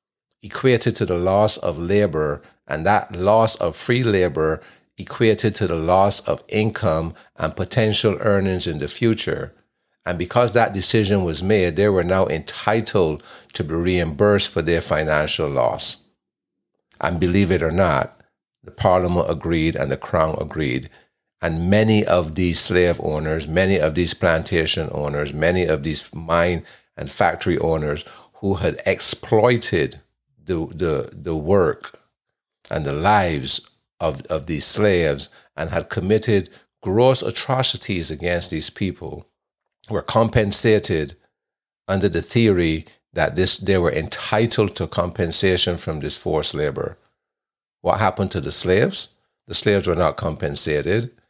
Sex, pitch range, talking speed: male, 80-105 Hz, 140 wpm